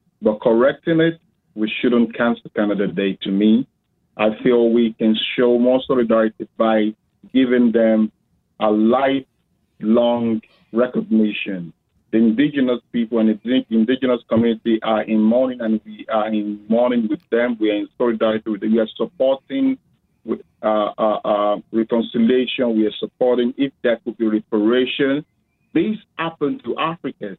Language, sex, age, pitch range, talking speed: English, male, 50-69, 110-135 Hz, 145 wpm